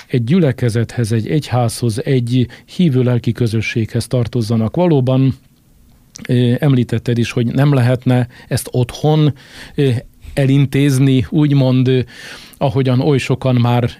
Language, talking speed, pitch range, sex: Hungarian, 95 wpm, 115-135 Hz, male